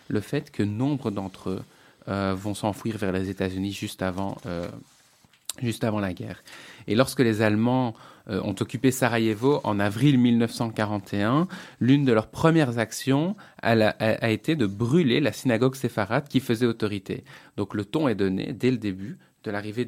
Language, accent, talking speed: French, French, 175 wpm